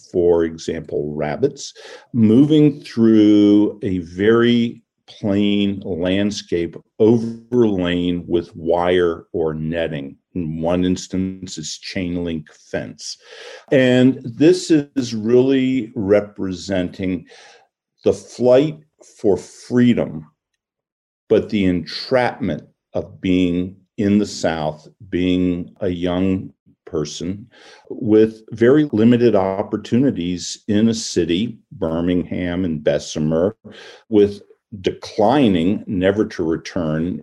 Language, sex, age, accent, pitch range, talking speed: English, male, 50-69, American, 90-120 Hz, 90 wpm